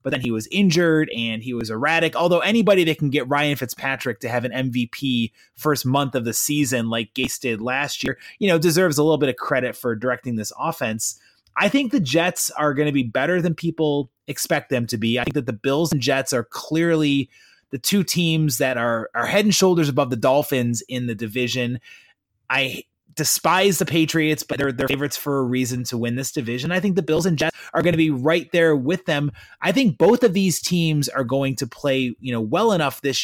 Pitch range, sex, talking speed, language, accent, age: 125-165 Hz, male, 225 wpm, English, American, 20-39